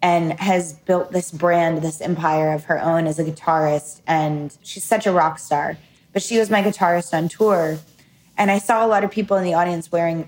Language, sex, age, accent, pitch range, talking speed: English, female, 20-39, American, 160-185 Hz, 215 wpm